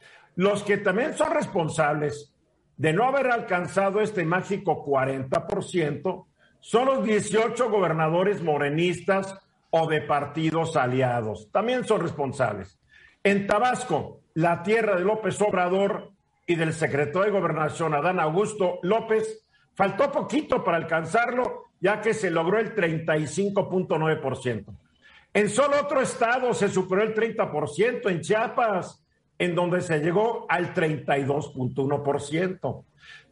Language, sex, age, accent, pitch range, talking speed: Spanish, male, 50-69, Mexican, 155-205 Hz, 115 wpm